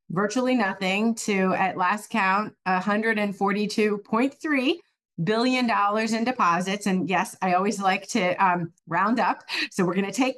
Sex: female